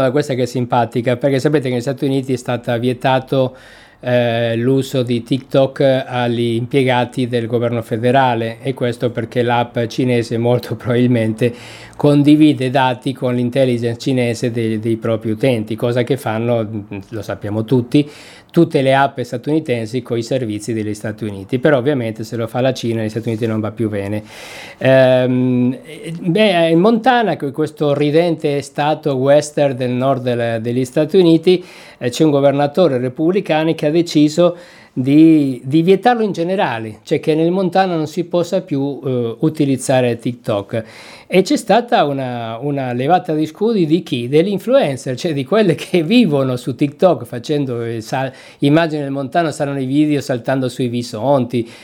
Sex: male